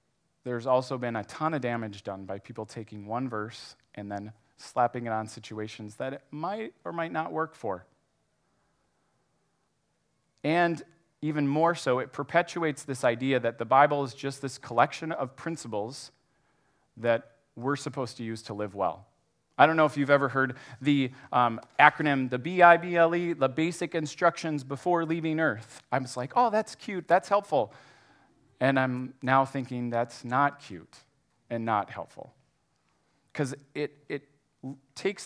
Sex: male